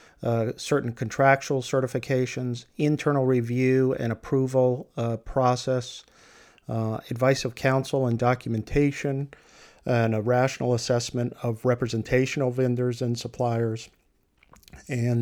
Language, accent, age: English, American, 50-69